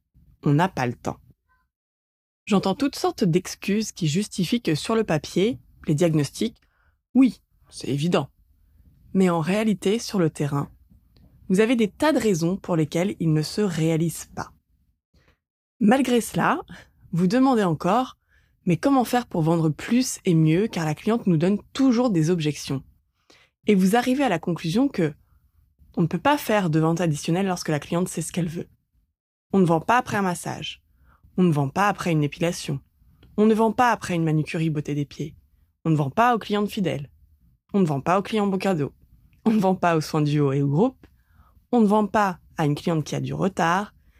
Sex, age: female, 20-39